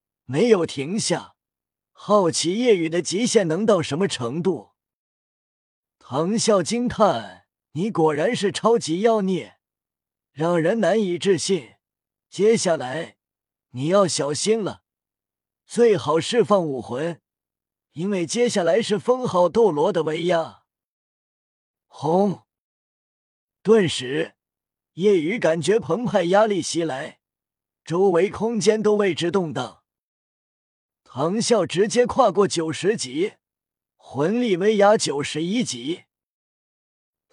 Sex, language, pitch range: male, Chinese, 155-215 Hz